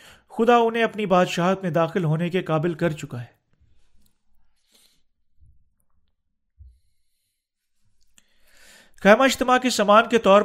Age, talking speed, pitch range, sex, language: 40-59, 105 wpm, 145-200 Hz, male, Urdu